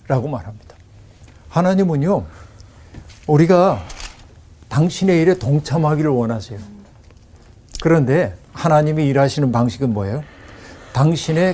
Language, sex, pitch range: Korean, male, 110-160 Hz